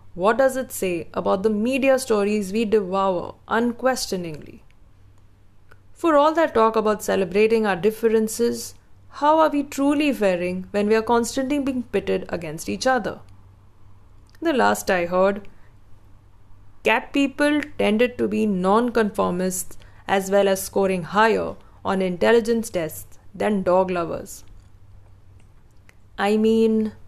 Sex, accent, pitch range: female, Indian, 160-220 Hz